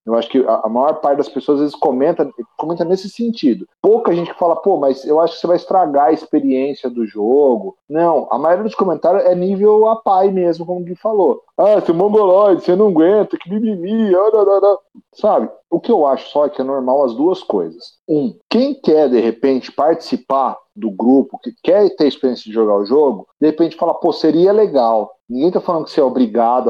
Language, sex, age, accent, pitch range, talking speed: Portuguese, male, 40-59, Brazilian, 125-190 Hz, 215 wpm